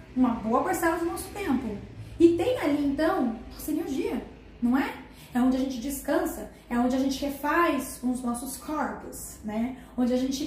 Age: 10-29